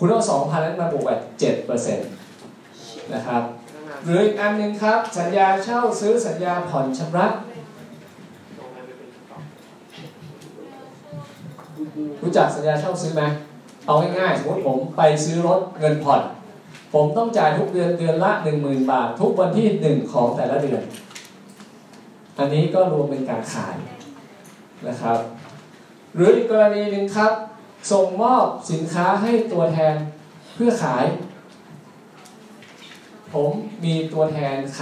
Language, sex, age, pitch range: Thai, male, 20-39, 150-210 Hz